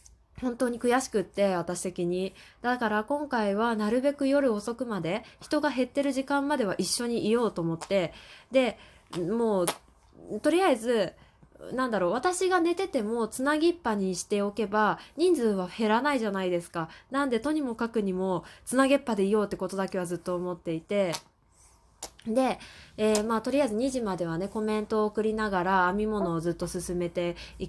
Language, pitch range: Japanese, 180-235 Hz